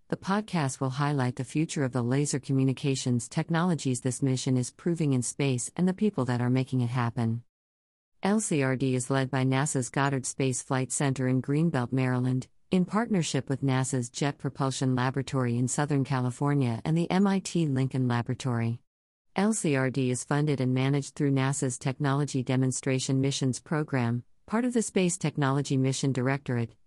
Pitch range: 130-150 Hz